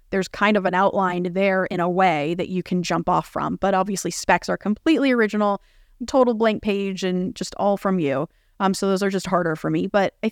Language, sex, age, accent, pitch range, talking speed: English, female, 20-39, American, 180-215 Hz, 225 wpm